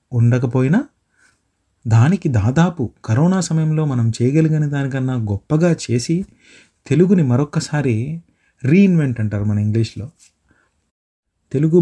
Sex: male